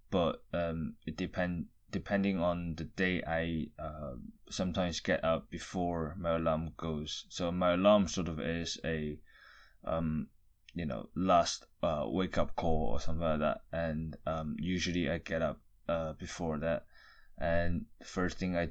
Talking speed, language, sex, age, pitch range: 155 wpm, English, male, 20-39, 80-95 Hz